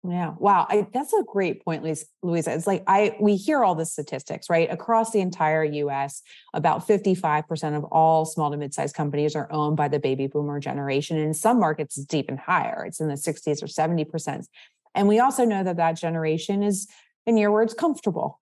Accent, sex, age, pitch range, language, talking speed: American, female, 30-49, 150-185 Hz, English, 200 wpm